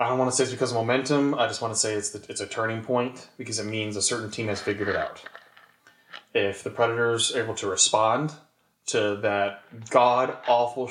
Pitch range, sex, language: 110-130 Hz, male, English